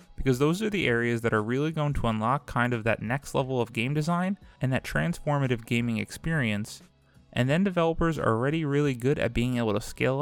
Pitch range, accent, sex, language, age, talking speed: 115-160 Hz, American, male, English, 20-39, 210 wpm